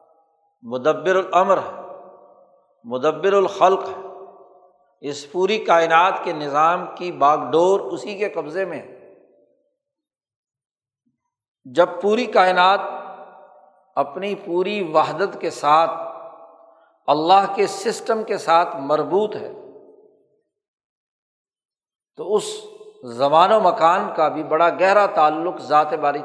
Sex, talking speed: male, 105 wpm